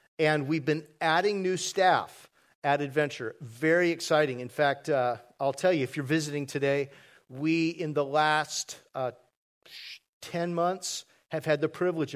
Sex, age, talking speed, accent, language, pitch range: male, 50-69, 155 wpm, American, English, 135-165 Hz